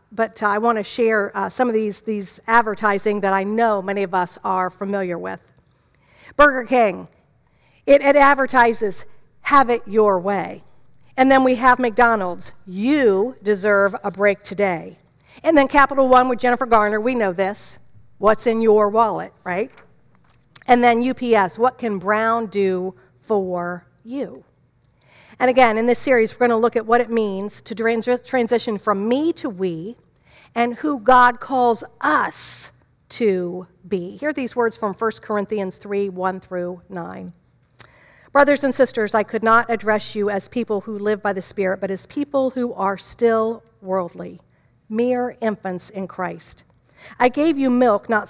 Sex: female